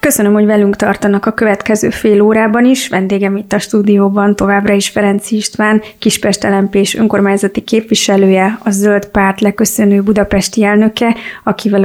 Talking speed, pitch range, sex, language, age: 140 wpm, 195-215 Hz, female, Hungarian, 30-49